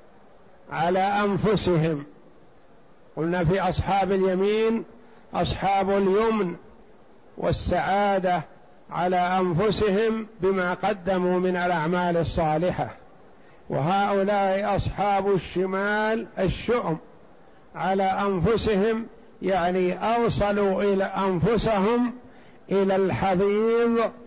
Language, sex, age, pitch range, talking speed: Arabic, male, 50-69, 180-205 Hz, 70 wpm